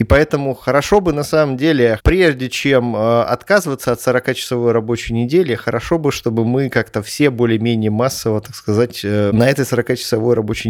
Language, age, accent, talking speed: Russian, 30-49, native, 170 wpm